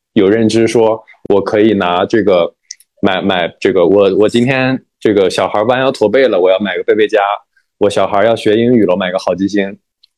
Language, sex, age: Chinese, male, 20-39